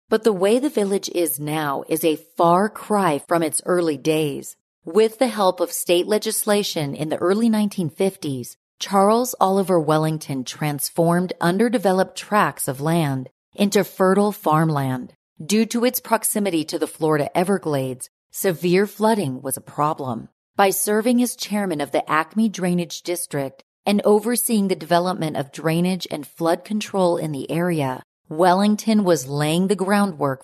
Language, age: English, 40-59